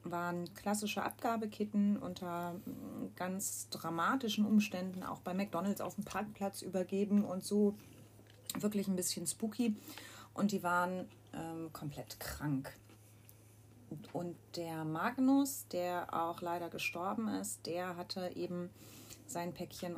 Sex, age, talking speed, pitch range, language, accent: female, 30-49, 115 wpm, 150-190 Hz, German, German